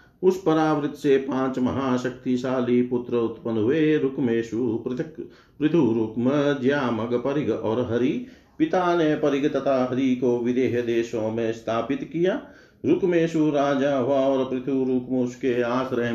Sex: male